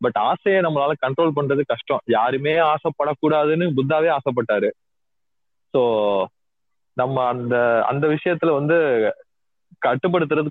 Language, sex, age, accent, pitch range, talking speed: Tamil, male, 30-49, native, 140-195 Hz, 95 wpm